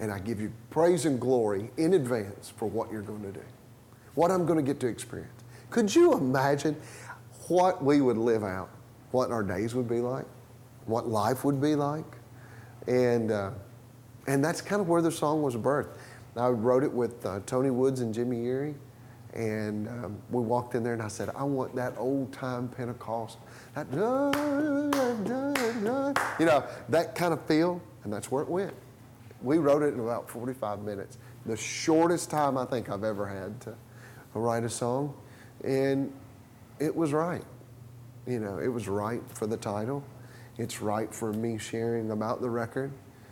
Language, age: English, 30-49